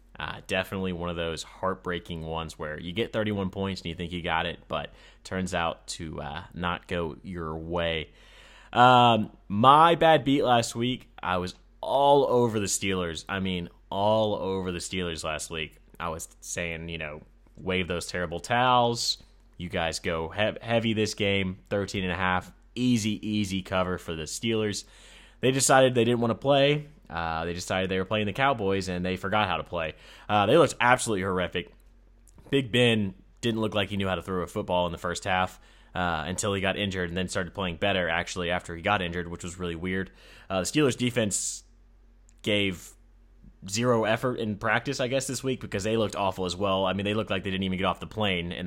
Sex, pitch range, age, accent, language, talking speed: male, 85-110 Hz, 20-39, American, English, 205 wpm